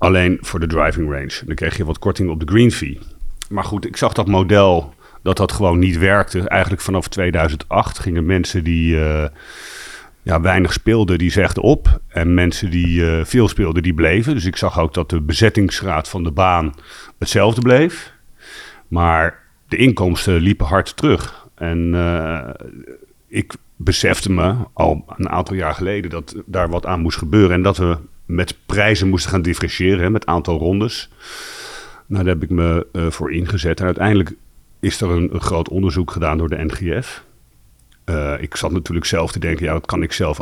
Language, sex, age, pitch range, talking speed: Dutch, male, 40-59, 80-100 Hz, 185 wpm